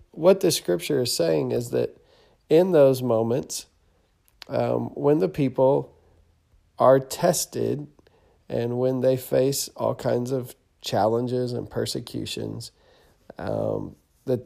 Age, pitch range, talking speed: 40-59, 120-145 Hz, 115 wpm